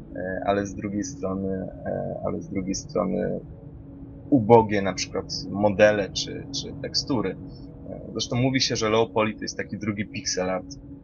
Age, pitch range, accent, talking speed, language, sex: 20-39, 105-135 Hz, native, 135 wpm, Polish, male